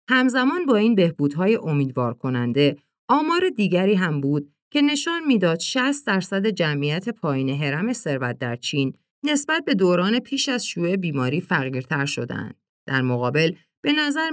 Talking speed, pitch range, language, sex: 140 wpm, 145-215 Hz, Persian, female